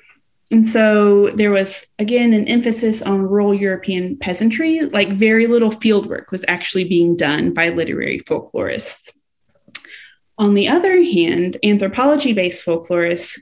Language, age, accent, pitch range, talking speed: English, 20-39, American, 180-230 Hz, 125 wpm